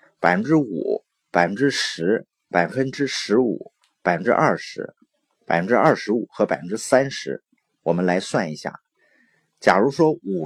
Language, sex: Chinese, male